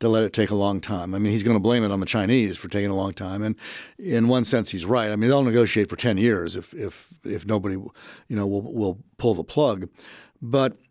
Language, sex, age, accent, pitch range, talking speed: English, male, 50-69, American, 105-135 Hz, 255 wpm